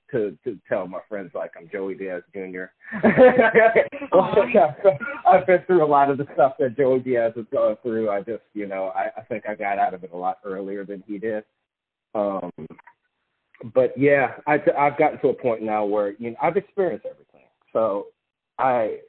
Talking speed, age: 190 wpm, 30-49